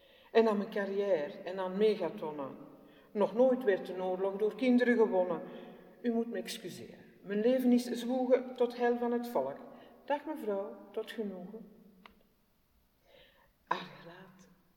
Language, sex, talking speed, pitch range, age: Dutch, female, 140 wpm, 180-250 Hz, 60-79